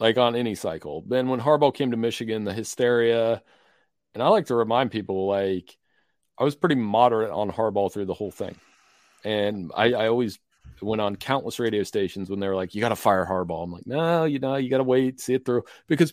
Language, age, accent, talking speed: English, 40-59, American, 225 wpm